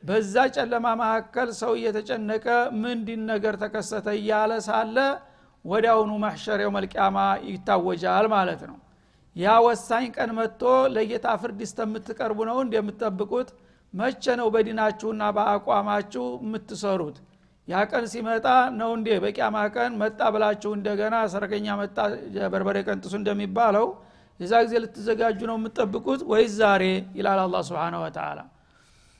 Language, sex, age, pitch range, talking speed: Amharic, male, 60-79, 205-230 Hz, 105 wpm